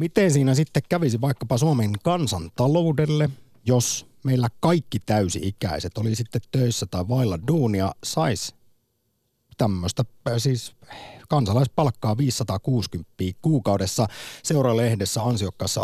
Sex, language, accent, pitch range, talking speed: male, Finnish, native, 95-130 Hz, 90 wpm